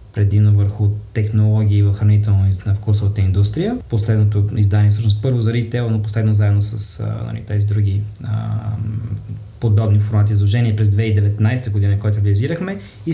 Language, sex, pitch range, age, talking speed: Bulgarian, male, 105-140 Hz, 20-39, 130 wpm